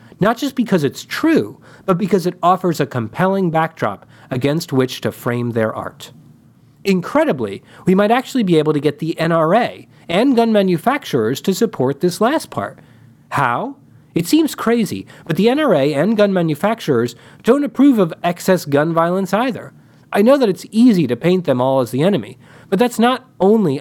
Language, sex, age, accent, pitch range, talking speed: English, male, 40-59, American, 130-210 Hz, 175 wpm